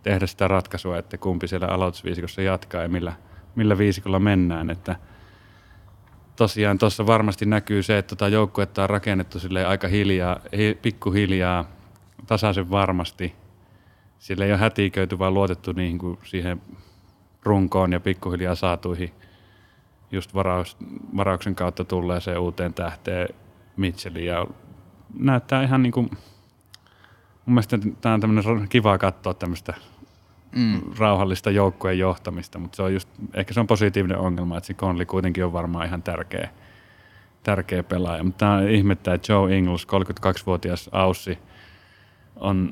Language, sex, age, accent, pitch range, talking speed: Finnish, male, 30-49, native, 90-100 Hz, 120 wpm